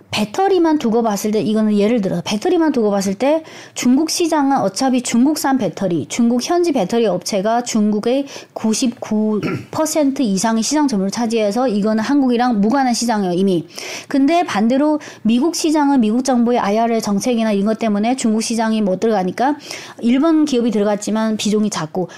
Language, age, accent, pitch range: Korean, 30-49, native, 215-285 Hz